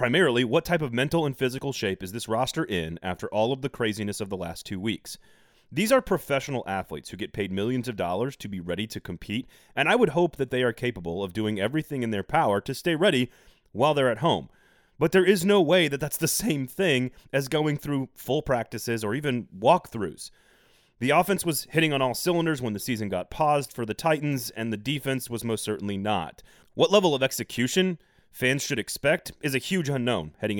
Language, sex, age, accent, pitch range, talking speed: English, male, 30-49, American, 105-145 Hz, 215 wpm